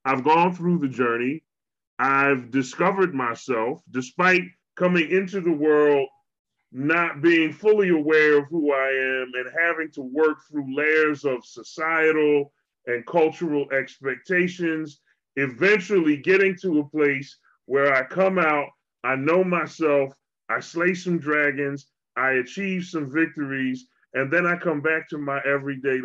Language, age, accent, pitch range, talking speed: English, 30-49, American, 145-185 Hz, 140 wpm